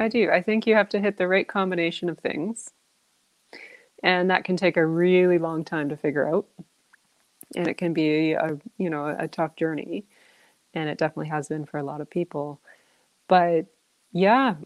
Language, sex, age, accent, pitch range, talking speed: English, female, 20-39, American, 160-205 Hz, 190 wpm